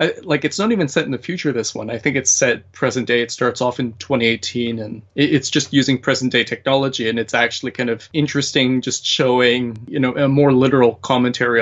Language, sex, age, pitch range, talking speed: English, male, 20-39, 120-140 Hz, 220 wpm